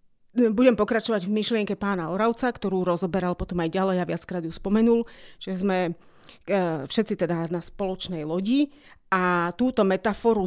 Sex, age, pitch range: female, 30-49, 185-230 Hz